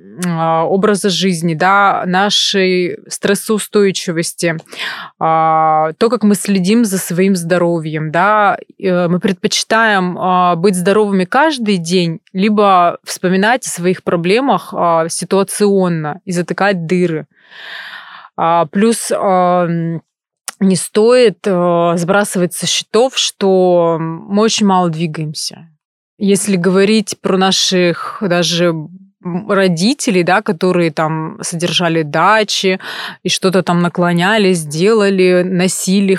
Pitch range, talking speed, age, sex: 180-210 Hz, 90 wpm, 20-39, female